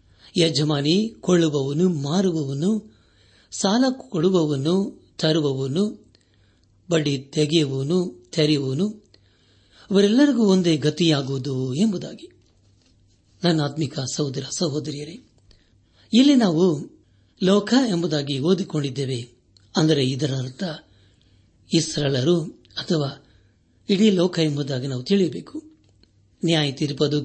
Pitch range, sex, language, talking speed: 105-170 Hz, male, Kannada, 75 wpm